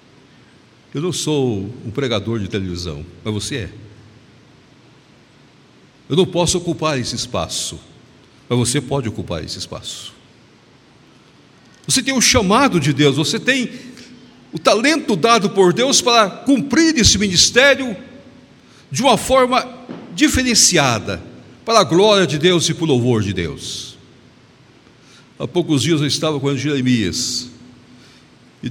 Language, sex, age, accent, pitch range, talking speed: Portuguese, male, 60-79, Brazilian, 110-150 Hz, 130 wpm